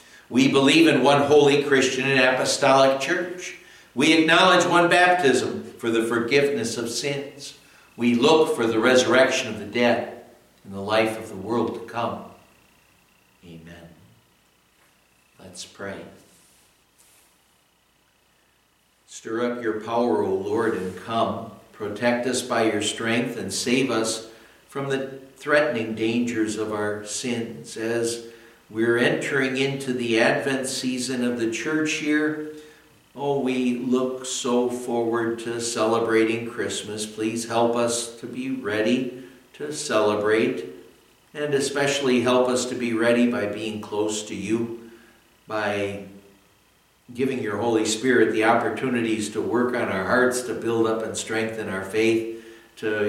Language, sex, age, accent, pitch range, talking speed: English, male, 60-79, American, 110-130 Hz, 135 wpm